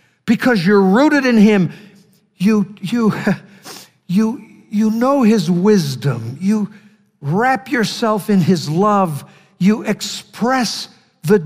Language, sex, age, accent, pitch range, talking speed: English, male, 60-79, American, 150-215 Hz, 110 wpm